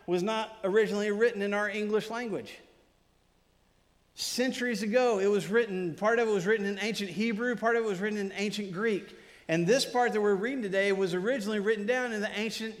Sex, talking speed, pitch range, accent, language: male, 200 wpm, 185-225 Hz, American, English